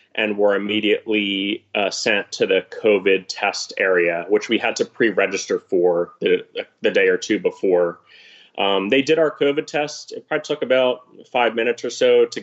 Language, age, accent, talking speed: English, 30-49, American, 180 wpm